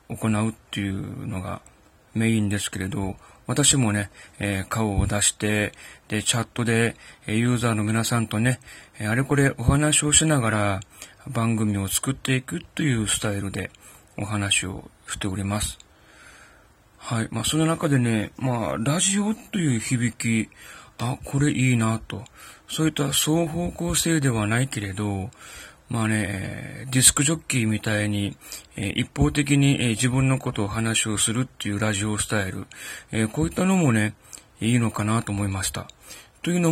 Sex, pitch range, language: male, 105-140 Hz, Japanese